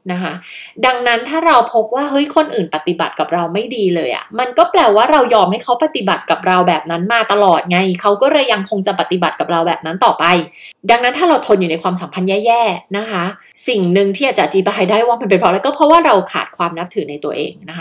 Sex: female